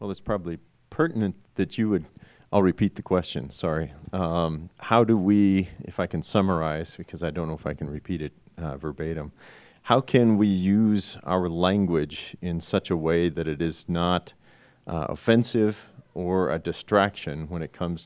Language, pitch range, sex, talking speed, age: English, 80-105 Hz, male, 175 wpm, 40-59